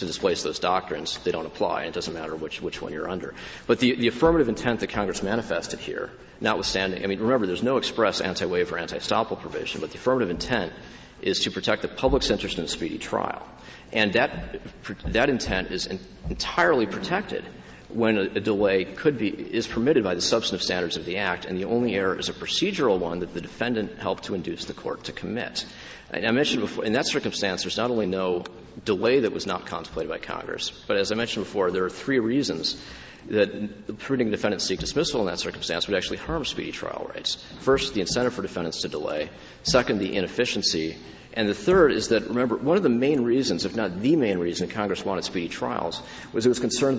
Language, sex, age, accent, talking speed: English, male, 40-59, American, 210 wpm